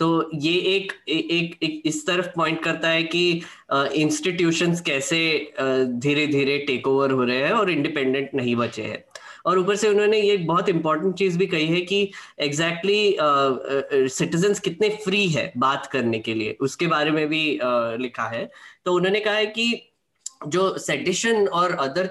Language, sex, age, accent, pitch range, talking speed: Hindi, female, 20-39, native, 135-180 Hz, 180 wpm